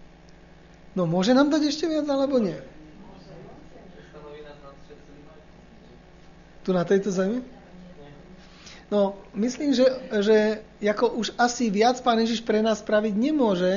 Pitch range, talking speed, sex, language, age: 190-245 Hz, 115 wpm, male, Slovak, 40-59